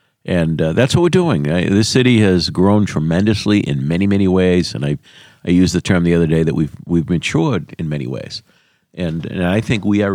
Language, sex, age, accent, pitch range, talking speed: English, male, 50-69, American, 80-110 Hz, 225 wpm